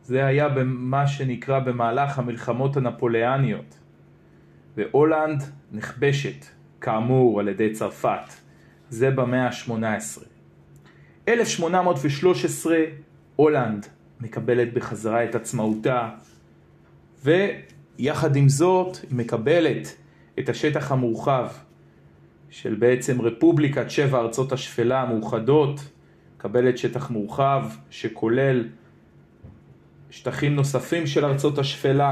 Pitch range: 115-140 Hz